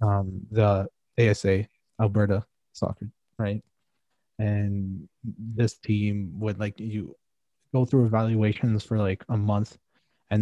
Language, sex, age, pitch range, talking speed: English, male, 20-39, 100-120 Hz, 115 wpm